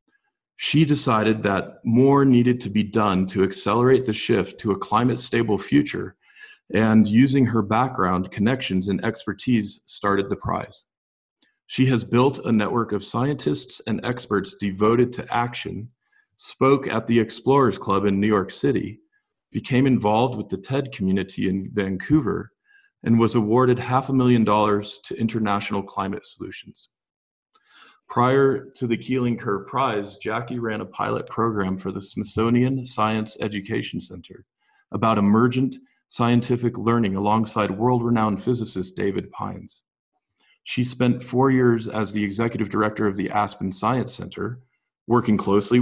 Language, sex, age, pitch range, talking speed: English, male, 40-59, 105-125 Hz, 140 wpm